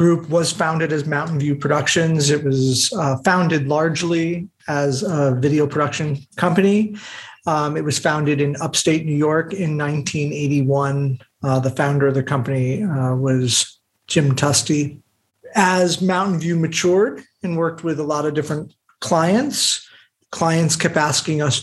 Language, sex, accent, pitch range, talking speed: English, male, American, 140-170 Hz, 145 wpm